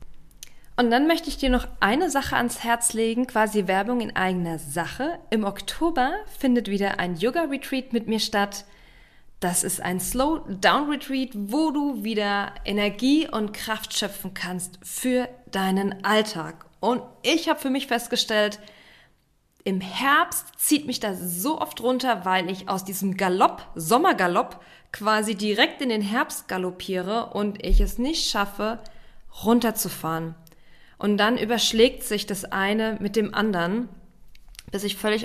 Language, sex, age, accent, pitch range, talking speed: German, female, 20-39, German, 195-250 Hz, 150 wpm